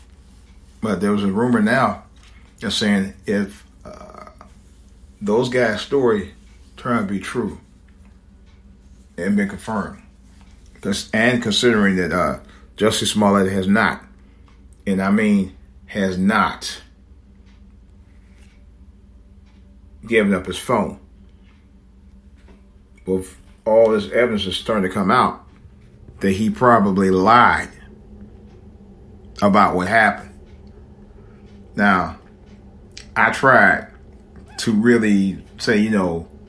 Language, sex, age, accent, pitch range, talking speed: English, male, 40-59, American, 85-100 Hz, 100 wpm